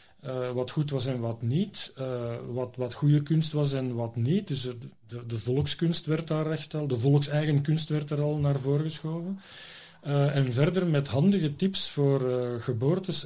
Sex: male